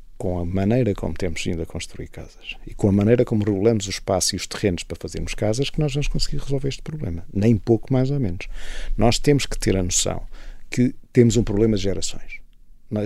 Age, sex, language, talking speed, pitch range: 50-69, male, Portuguese, 220 wpm, 100-130 Hz